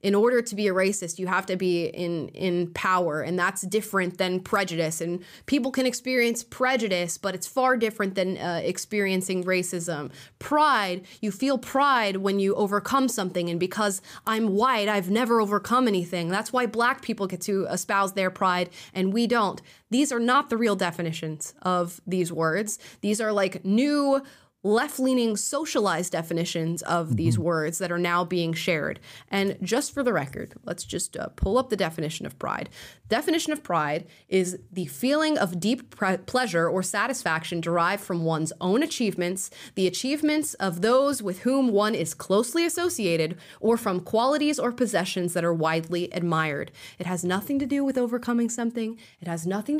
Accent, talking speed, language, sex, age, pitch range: American, 170 wpm, English, female, 20-39, 180-245 Hz